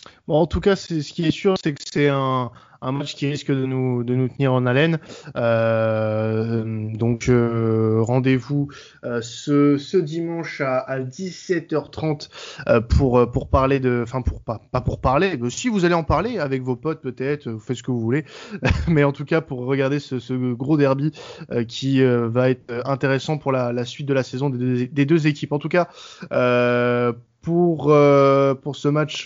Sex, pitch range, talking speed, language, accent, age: male, 125-155 Hz, 205 wpm, French, French, 20-39